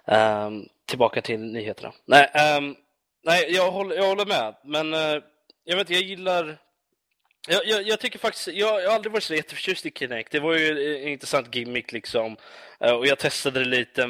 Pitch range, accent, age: 125-165 Hz, Swedish, 20-39